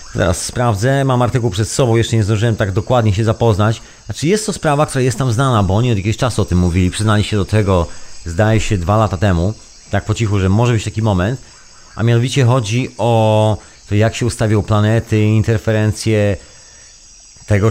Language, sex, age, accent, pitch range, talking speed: Polish, male, 40-59, native, 90-115 Hz, 195 wpm